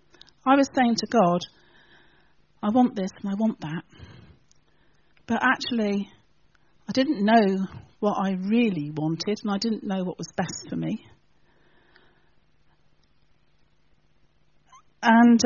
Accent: British